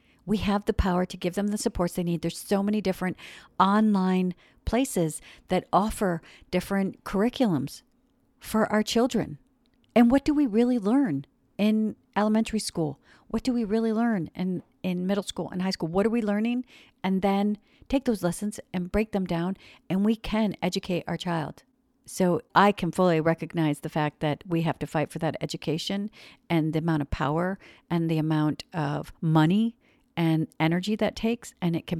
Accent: American